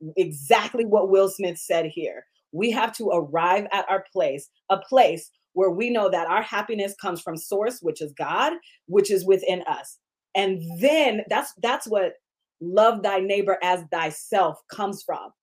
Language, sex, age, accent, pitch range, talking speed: English, female, 30-49, American, 180-240 Hz, 165 wpm